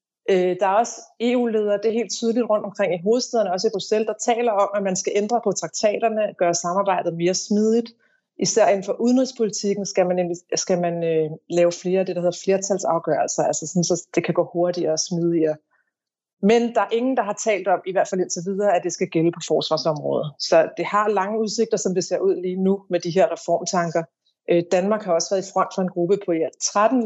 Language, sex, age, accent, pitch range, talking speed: Danish, female, 30-49, native, 170-200 Hz, 215 wpm